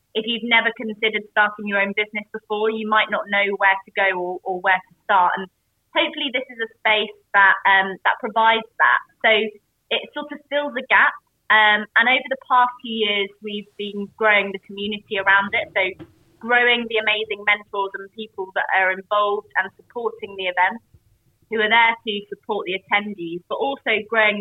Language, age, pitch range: English, 20-39, 195-225 Hz